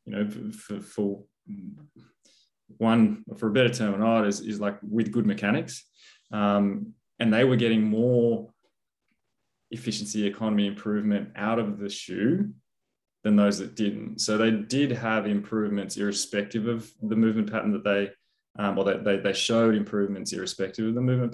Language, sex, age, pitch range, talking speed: English, male, 20-39, 100-115 Hz, 160 wpm